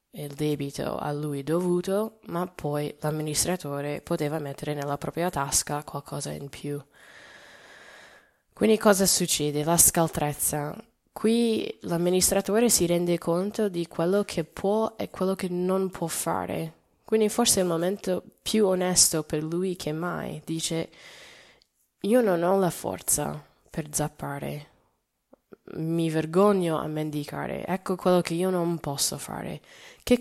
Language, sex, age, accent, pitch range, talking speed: Italian, female, 10-29, native, 155-190 Hz, 135 wpm